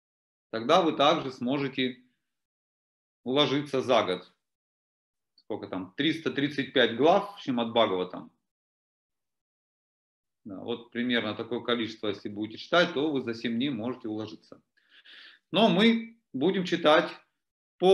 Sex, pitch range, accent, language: male, 110-160 Hz, native, Russian